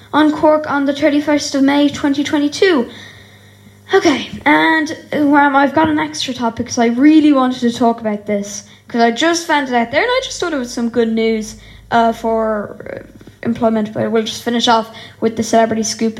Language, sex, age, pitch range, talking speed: English, female, 10-29, 225-290 Hz, 200 wpm